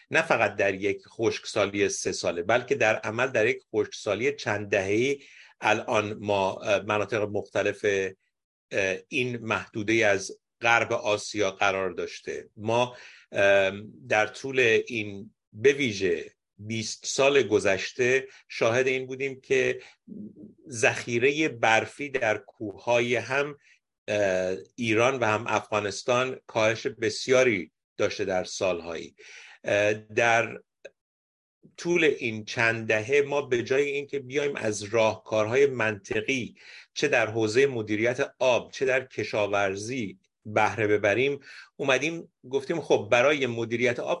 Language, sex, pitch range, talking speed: Persian, male, 105-155 Hz, 110 wpm